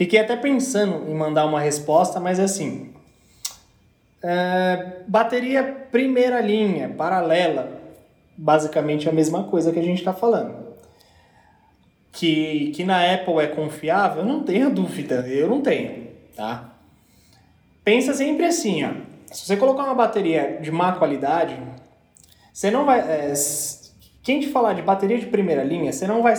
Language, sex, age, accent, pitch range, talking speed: Portuguese, male, 20-39, Brazilian, 150-215 Hz, 145 wpm